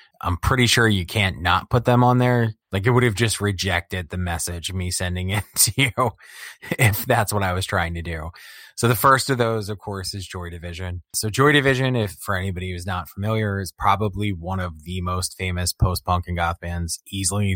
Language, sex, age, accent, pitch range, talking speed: English, male, 20-39, American, 90-105 Hz, 215 wpm